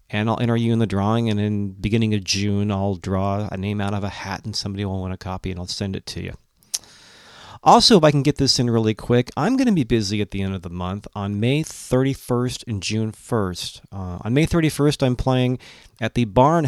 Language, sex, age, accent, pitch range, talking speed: English, male, 40-59, American, 100-120 Hz, 245 wpm